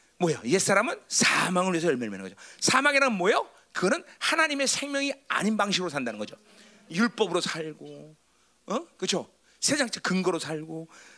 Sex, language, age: male, Korean, 40-59